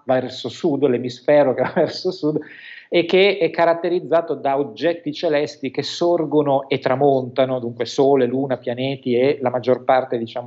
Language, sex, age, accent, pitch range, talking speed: Italian, male, 40-59, native, 130-165 Hz, 150 wpm